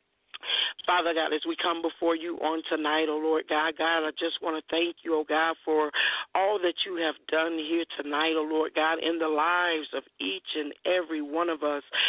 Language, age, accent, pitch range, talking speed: English, 50-69, American, 165-205 Hz, 225 wpm